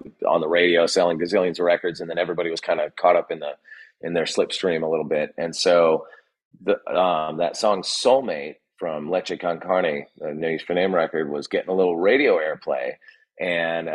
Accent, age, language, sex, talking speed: American, 30-49, English, male, 200 wpm